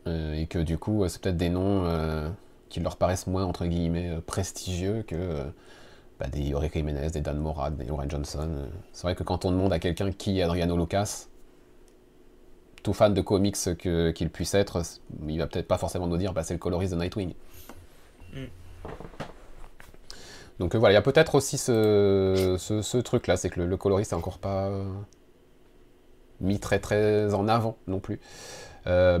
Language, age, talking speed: French, 30-49, 185 wpm